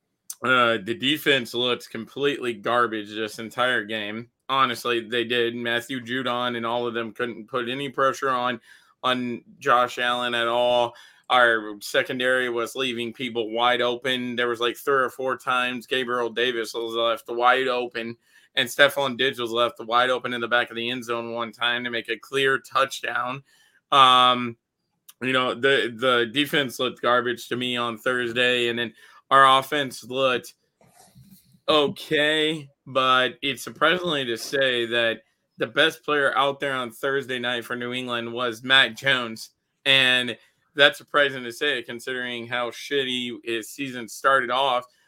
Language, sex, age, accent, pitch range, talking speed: English, male, 20-39, American, 115-130 Hz, 160 wpm